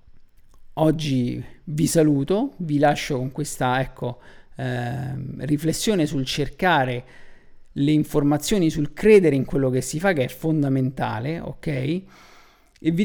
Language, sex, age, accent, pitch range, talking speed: Italian, male, 50-69, native, 140-185 Hz, 125 wpm